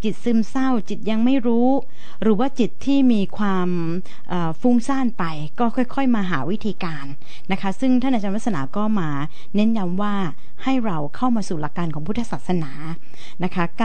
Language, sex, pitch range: Thai, female, 170-220 Hz